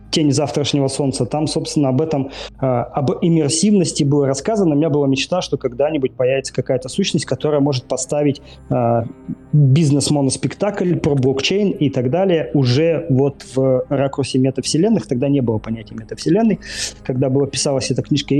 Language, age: Russian, 20-39